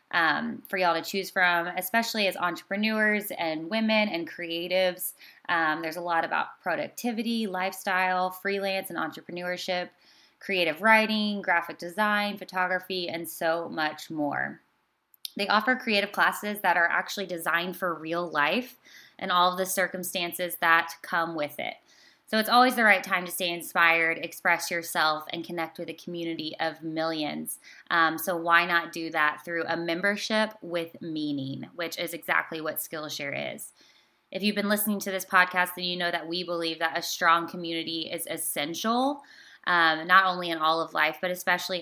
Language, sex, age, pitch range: English, female, 20-39, 165-195 Hz